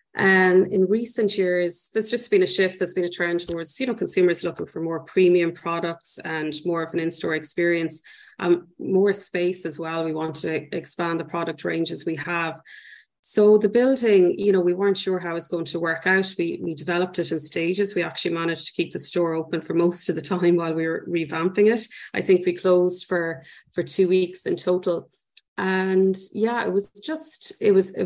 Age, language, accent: 30-49, English, Irish